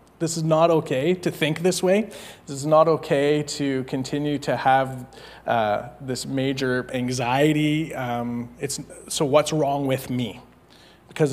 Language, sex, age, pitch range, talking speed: English, male, 20-39, 130-155 Hz, 150 wpm